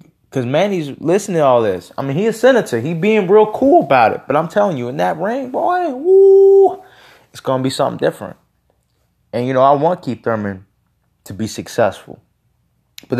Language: English